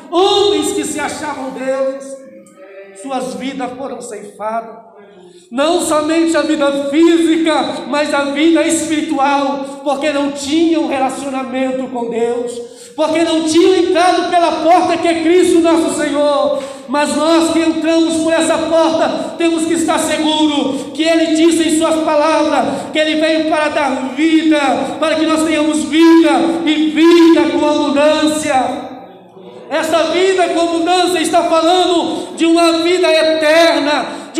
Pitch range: 275-330 Hz